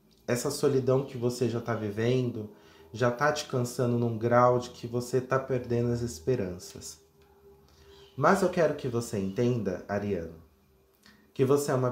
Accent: Brazilian